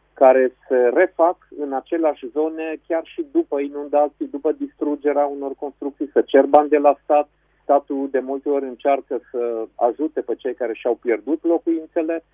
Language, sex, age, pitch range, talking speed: Romanian, male, 40-59, 130-165 Hz, 160 wpm